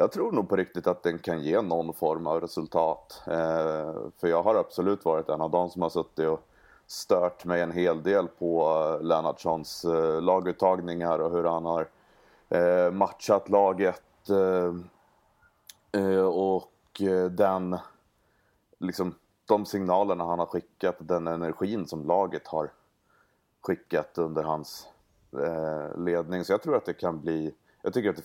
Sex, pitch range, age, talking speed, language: male, 80-90 Hz, 30-49, 140 wpm, Swedish